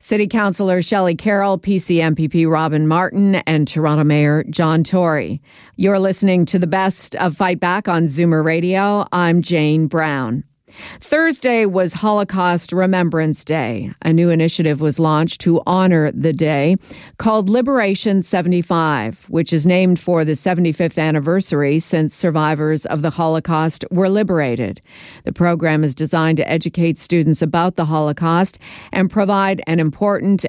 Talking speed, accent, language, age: 140 wpm, American, English, 50-69